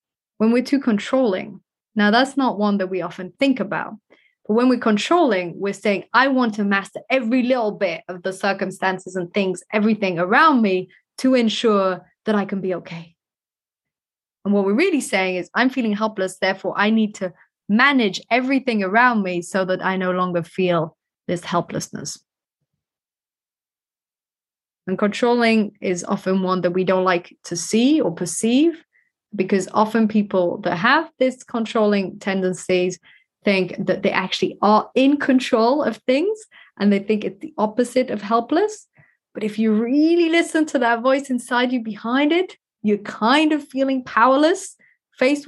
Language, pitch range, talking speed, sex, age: English, 190-255 Hz, 160 wpm, female, 20-39